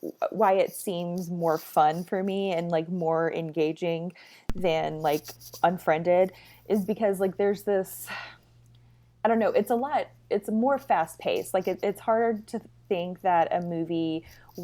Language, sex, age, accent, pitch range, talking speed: English, female, 20-39, American, 150-190 Hz, 150 wpm